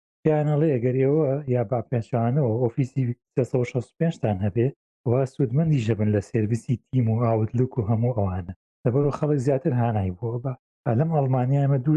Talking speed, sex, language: 140 wpm, male, Arabic